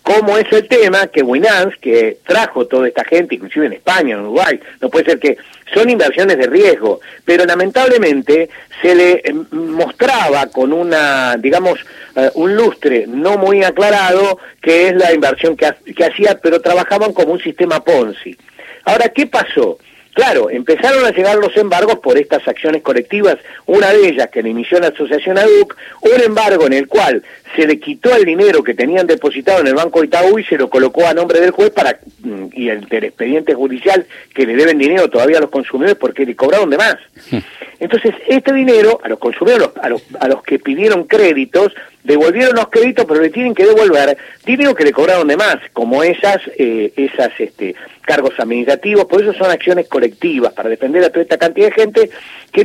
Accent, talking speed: Argentinian, 190 wpm